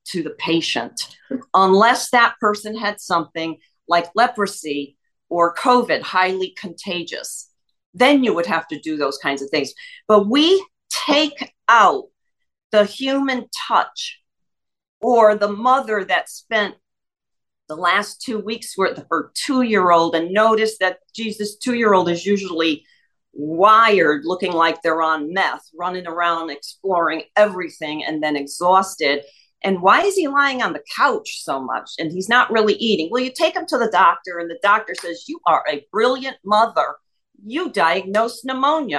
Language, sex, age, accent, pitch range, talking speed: English, female, 50-69, American, 175-255 Hz, 150 wpm